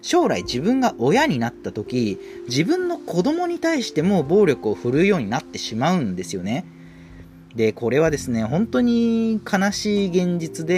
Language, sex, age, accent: Japanese, male, 40-59, native